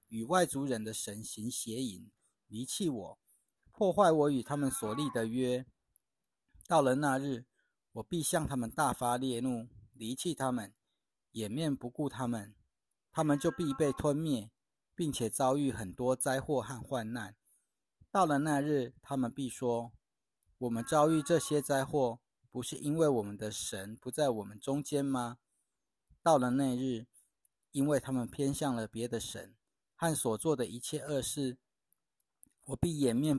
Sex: male